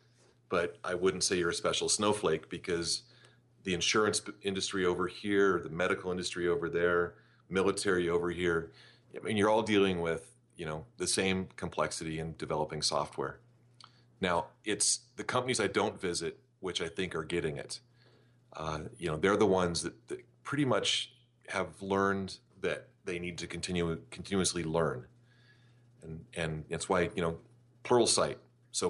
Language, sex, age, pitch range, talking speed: English, male, 30-49, 85-110 Hz, 160 wpm